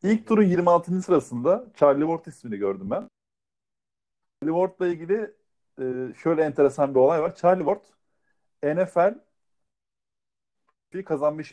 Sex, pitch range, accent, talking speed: male, 135-190 Hz, native, 110 wpm